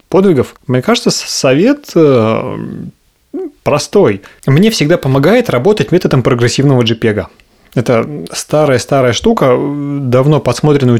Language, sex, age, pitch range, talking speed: Russian, male, 30-49, 120-160 Hz, 105 wpm